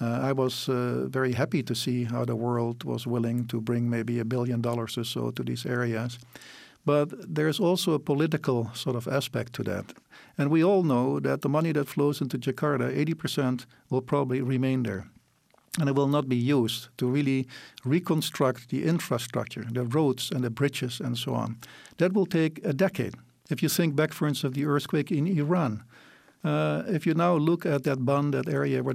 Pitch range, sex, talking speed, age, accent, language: 125-155 Hz, male, 200 wpm, 50-69, Dutch, English